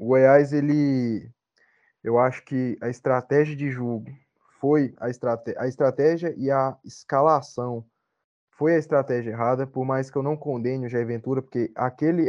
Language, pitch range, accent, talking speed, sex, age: Portuguese, 125-170 Hz, Brazilian, 160 wpm, male, 20-39